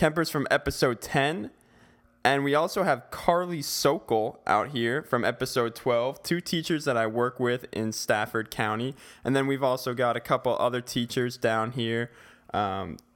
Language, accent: English, American